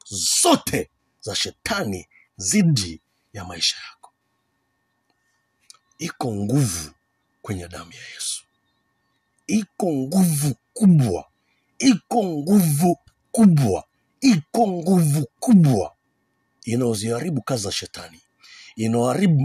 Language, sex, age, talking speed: Swahili, male, 50-69, 85 wpm